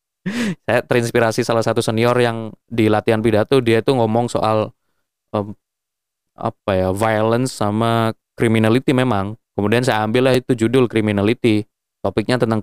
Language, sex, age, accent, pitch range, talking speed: Indonesian, male, 20-39, native, 105-135 Hz, 135 wpm